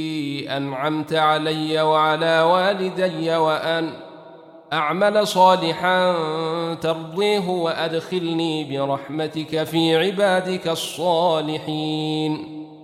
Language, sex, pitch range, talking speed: Arabic, male, 155-185 Hz, 60 wpm